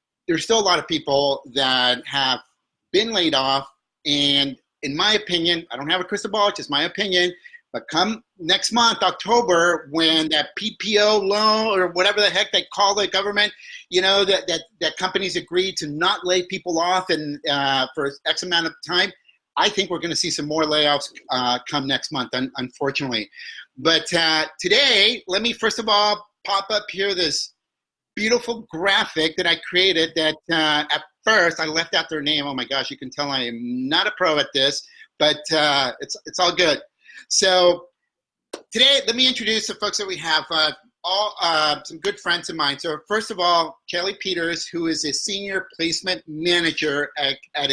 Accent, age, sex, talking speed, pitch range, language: American, 30-49, male, 190 wpm, 155-205 Hz, English